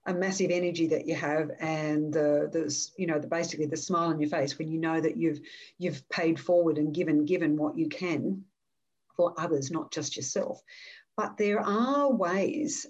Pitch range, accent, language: 160-210 Hz, Australian, English